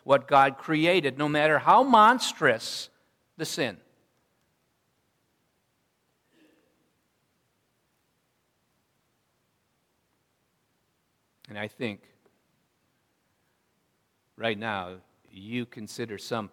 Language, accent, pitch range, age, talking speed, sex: English, American, 115-150 Hz, 50-69, 60 wpm, male